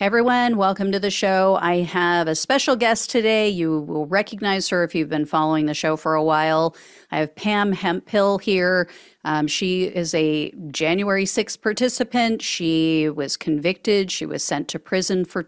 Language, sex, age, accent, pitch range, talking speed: English, female, 40-59, American, 160-205 Hz, 175 wpm